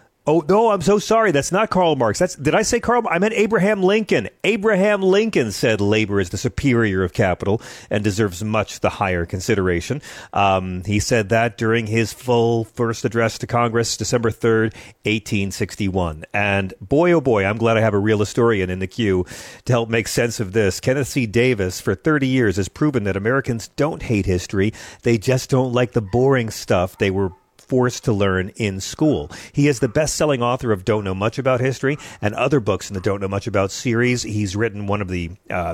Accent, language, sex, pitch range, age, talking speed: American, English, male, 100-125 Hz, 40-59, 205 wpm